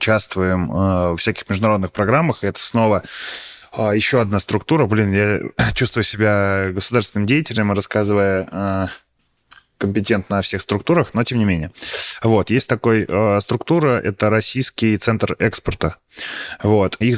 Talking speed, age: 135 wpm, 20-39